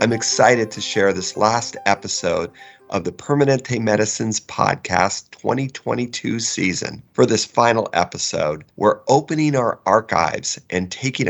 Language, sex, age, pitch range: English, male, 40-59, 95-125 Hz